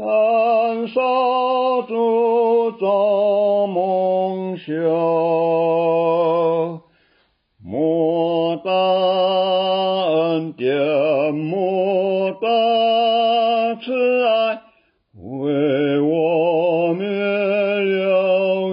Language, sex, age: Chinese, male, 50-69